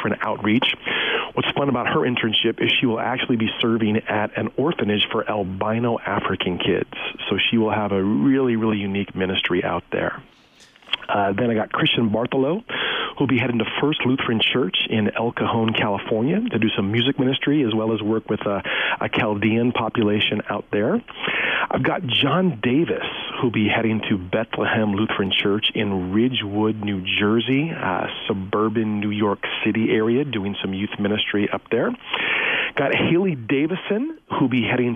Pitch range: 100-125 Hz